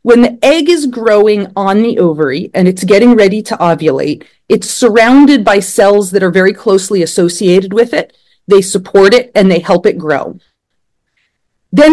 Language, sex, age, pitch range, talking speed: English, female, 30-49, 175-240 Hz, 170 wpm